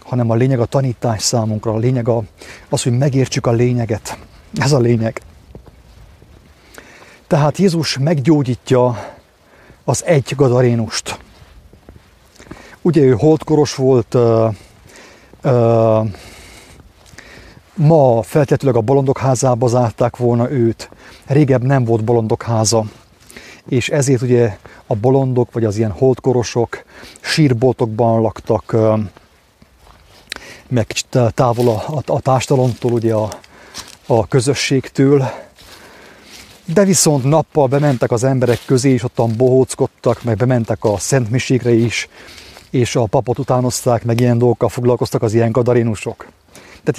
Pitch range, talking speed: 115-135 Hz, 110 wpm